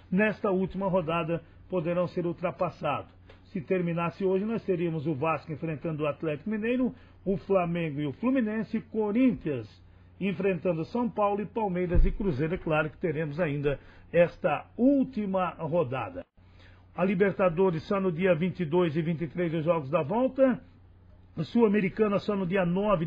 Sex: male